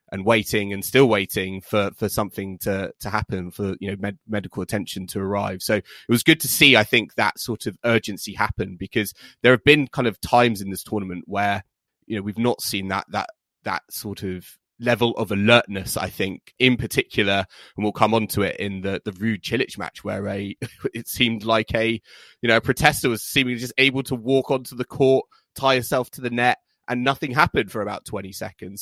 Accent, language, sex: British, English, male